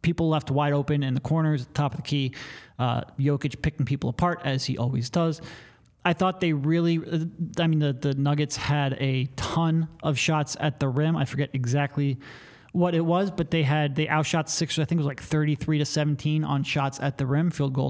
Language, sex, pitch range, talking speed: English, male, 135-160 Hz, 210 wpm